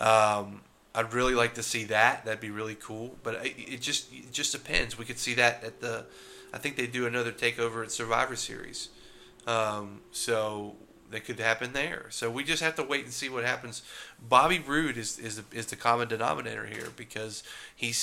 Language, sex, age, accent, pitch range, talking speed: English, male, 30-49, American, 105-120 Hz, 200 wpm